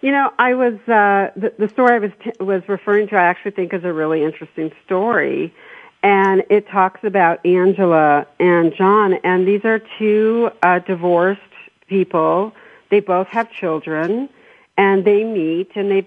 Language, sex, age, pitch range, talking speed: English, female, 50-69, 180-225 Hz, 170 wpm